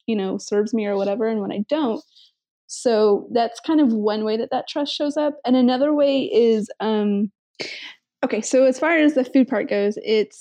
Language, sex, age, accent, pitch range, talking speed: English, female, 20-39, American, 210-275 Hz, 210 wpm